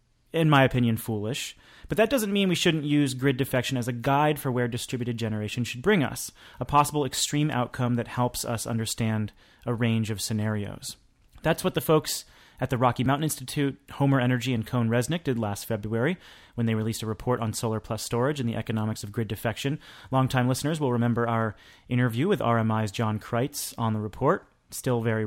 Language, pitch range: English, 115-145 Hz